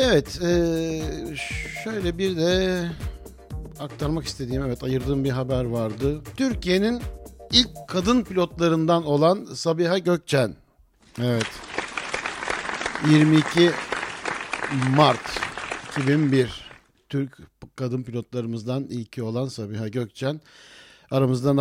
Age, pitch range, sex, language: 60-79, 115-145 Hz, male, Turkish